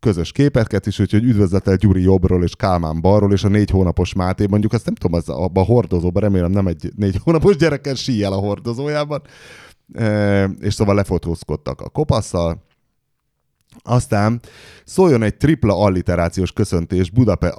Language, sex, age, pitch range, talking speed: Hungarian, male, 30-49, 90-120 Hz, 150 wpm